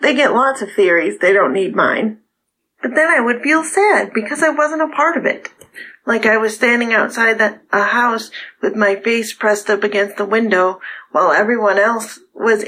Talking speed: 195 wpm